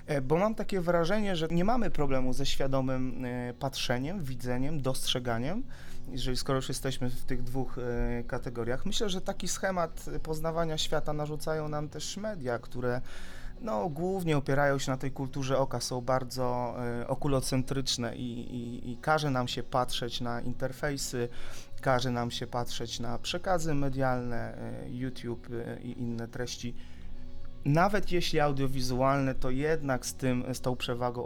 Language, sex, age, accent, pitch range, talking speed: Polish, male, 30-49, native, 125-155 Hz, 135 wpm